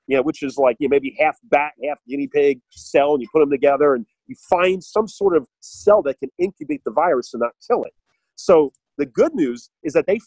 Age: 40-59